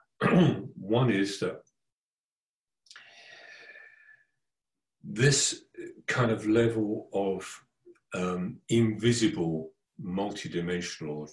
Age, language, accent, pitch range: 50-69, Dutch, British, 90-120 Hz